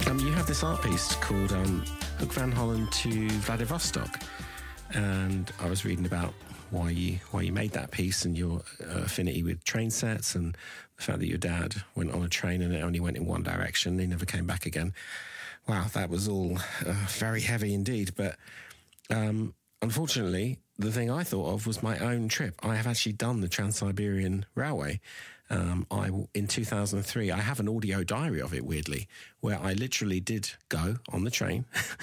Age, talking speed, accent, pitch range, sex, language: 50-69, 190 wpm, British, 90-110 Hz, male, English